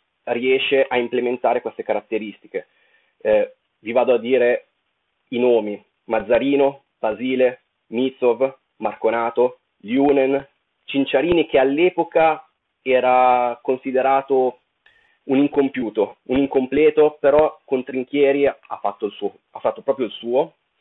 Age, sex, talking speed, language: 30-49, male, 100 wpm, Italian